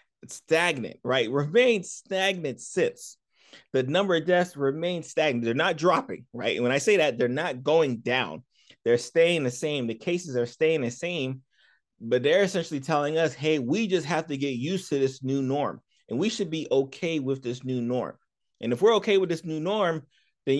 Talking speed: 200 wpm